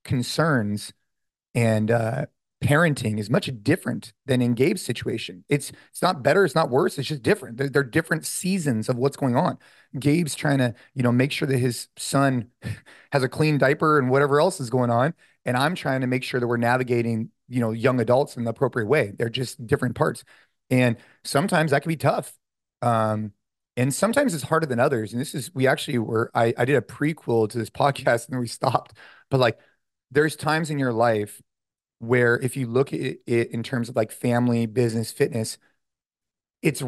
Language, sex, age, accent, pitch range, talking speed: English, male, 30-49, American, 120-145 Hz, 200 wpm